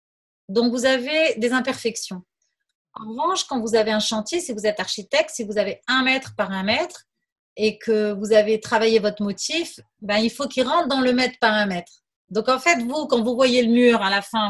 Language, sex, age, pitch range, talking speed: French, female, 30-49, 205-255 Hz, 225 wpm